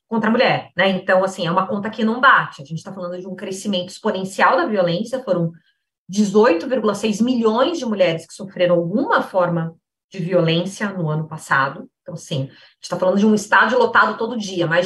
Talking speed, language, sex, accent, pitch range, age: 200 wpm, Portuguese, female, Brazilian, 180-245 Hz, 20-39